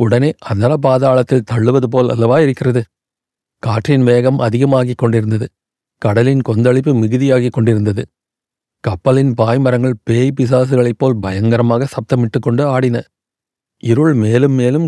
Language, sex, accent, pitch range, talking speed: Tamil, male, native, 120-145 Hz, 100 wpm